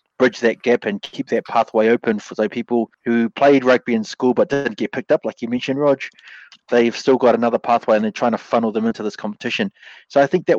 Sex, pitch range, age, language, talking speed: male, 120-155 Hz, 20-39, English, 245 wpm